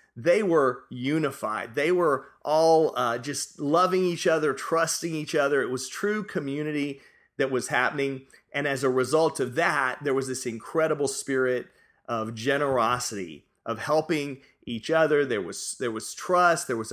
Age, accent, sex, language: 30-49, American, male, English